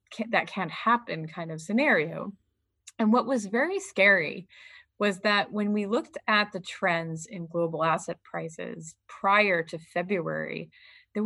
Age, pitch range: 20-39, 165-215 Hz